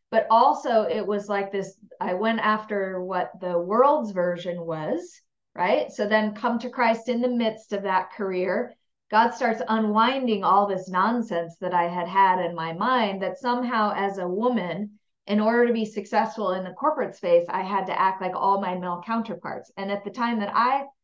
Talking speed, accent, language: 195 wpm, American, English